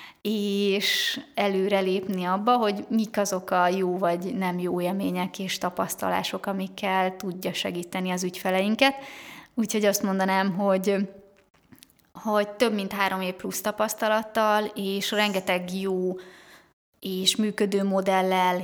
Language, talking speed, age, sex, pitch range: Hungarian, 120 wpm, 20-39, female, 185-210 Hz